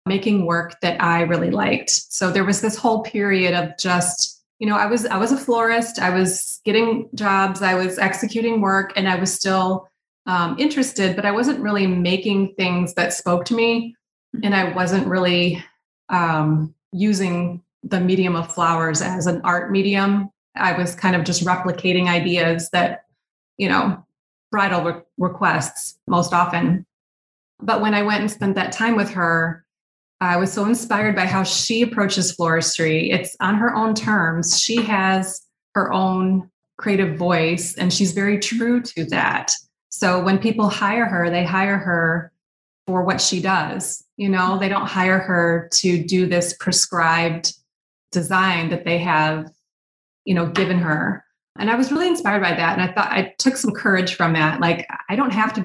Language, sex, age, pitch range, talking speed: English, female, 30-49, 175-205 Hz, 175 wpm